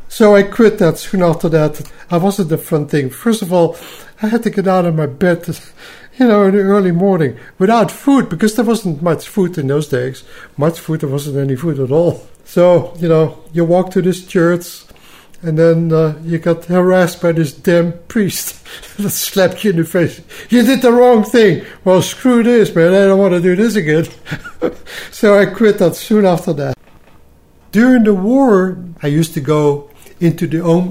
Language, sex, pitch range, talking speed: English, male, 145-185 Hz, 200 wpm